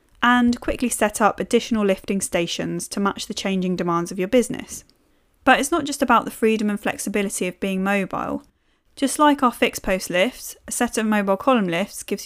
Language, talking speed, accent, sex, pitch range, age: English, 195 wpm, British, female, 190-240 Hz, 10-29